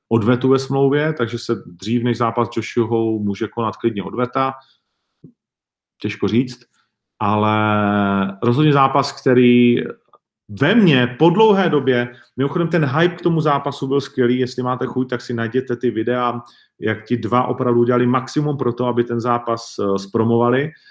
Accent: native